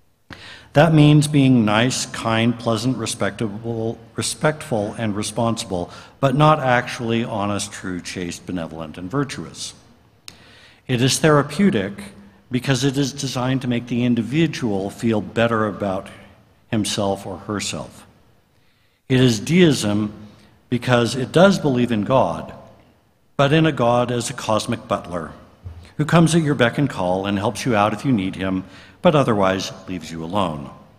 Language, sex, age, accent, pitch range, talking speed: English, male, 60-79, American, 105-130 Hz, 140 wpm